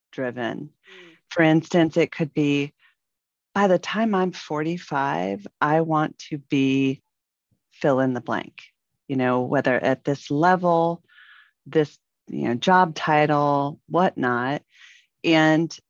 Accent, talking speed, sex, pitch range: American, 120 wpm, female, 135-195 Hz